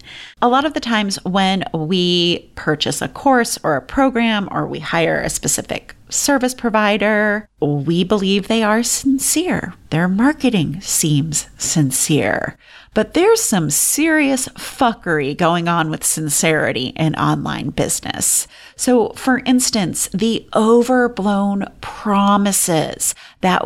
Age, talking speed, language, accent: 30-49, 120 wpm, English, American